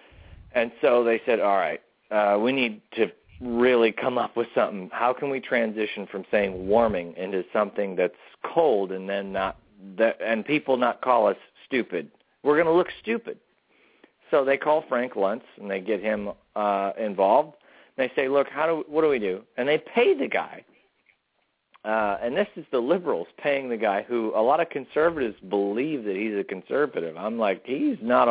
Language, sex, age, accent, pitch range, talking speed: English, male, 40-59, American, 105-145 Hz, 195 wpm